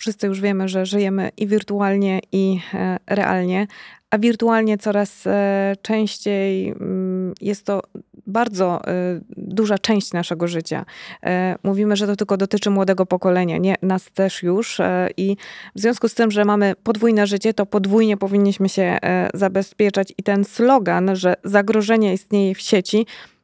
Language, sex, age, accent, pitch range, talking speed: Polish, female, 20-39, native, 190-215 Hz, 135 wpm